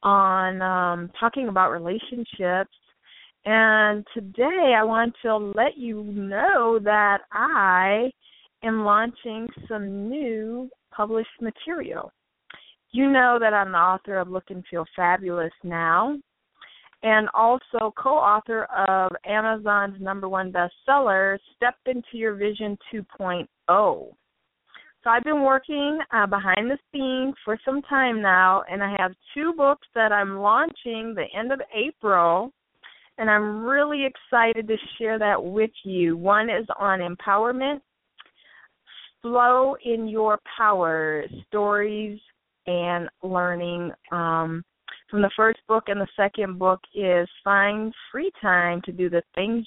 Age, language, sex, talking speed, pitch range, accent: 30-49, English, female, 130 wpm, 190-235 Hz, American